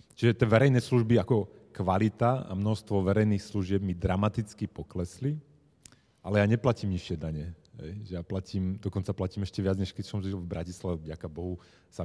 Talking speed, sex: 165 wpm, male